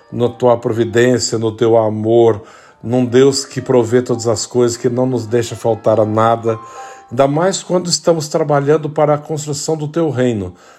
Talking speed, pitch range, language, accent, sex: 170 wpm, 110-140 Hz, Portuguese, Brazilian, male